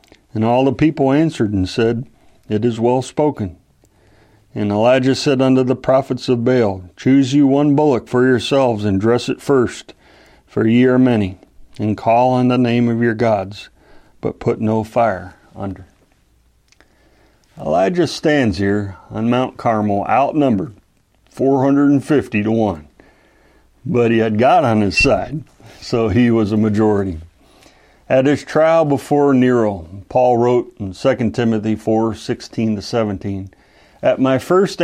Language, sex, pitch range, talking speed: English, male, 105-130 Hz, 145 wpm